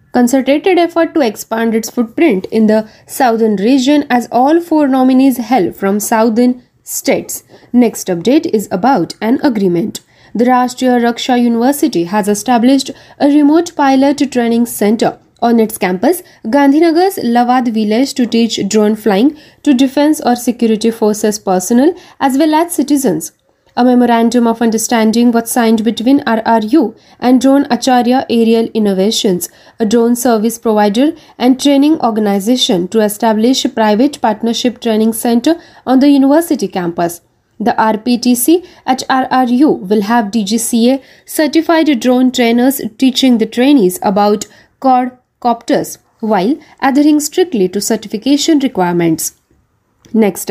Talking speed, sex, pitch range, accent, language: 130 wpm, female, 220-275 Hz, native, Marathi